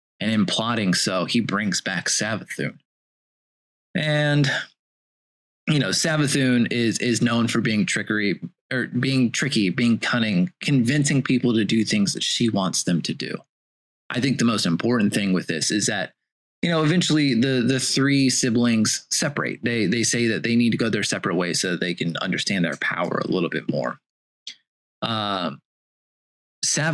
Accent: American